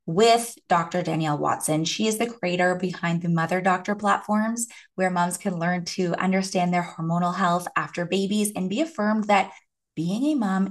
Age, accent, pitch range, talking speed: 20-39, American, 175-220 Hz, 175 wpm